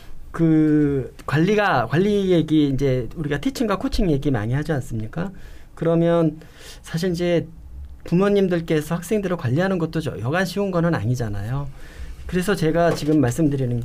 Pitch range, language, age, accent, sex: 135-180 Hz, Korean, 40-59, native, male